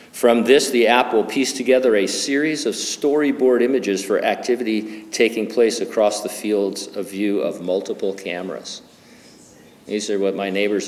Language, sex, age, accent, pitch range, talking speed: English, male, 50-69, American, 110-150 Hz, 160 wpm